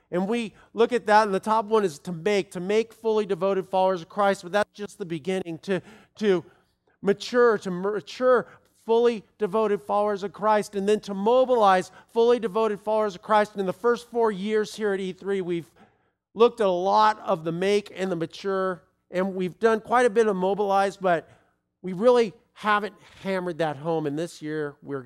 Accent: American